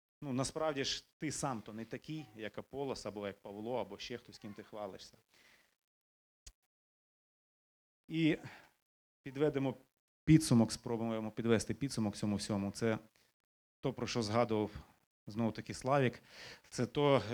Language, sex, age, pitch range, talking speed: Ukrainian, male, 30-49, 115-135 Hz, 120 wpm